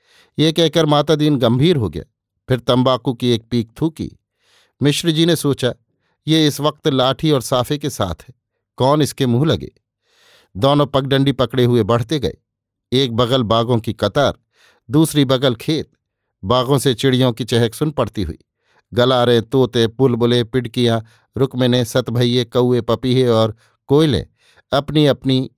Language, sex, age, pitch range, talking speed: Hindi, male, 50-69, 115-140 Hz, 150 wpm